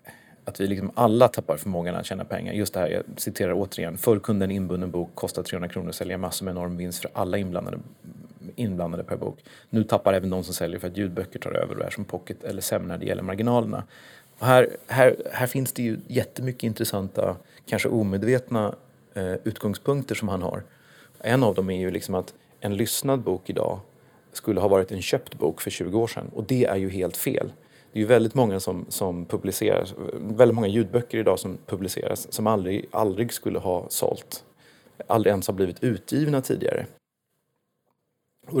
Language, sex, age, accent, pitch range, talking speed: Swedish, male, 30-49, native, 95-120 Hz, 195 wpm